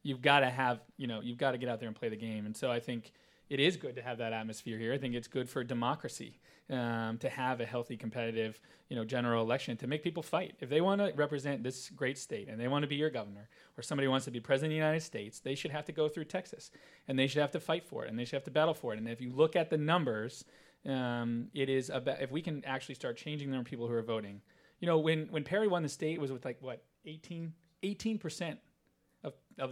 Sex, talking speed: male, 275 wpm